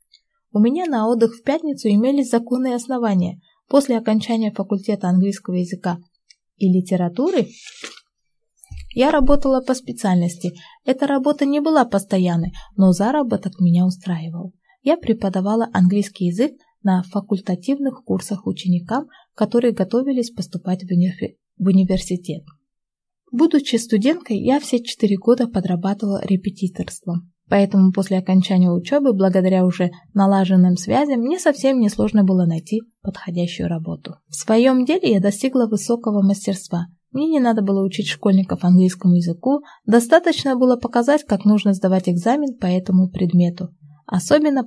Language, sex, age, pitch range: Korean, female, 20-39, 185-245 Hz